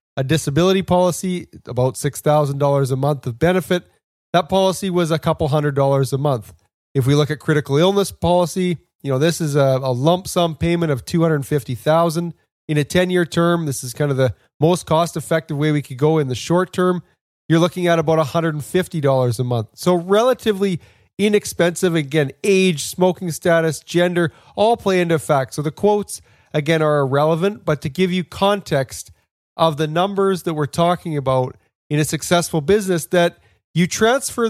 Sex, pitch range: male, 145-180 Hz